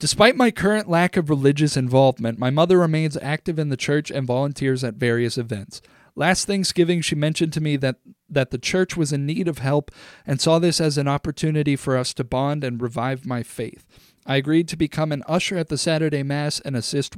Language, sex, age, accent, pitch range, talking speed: English, male, 40-59, American, 130-170 Hz, 210 wpm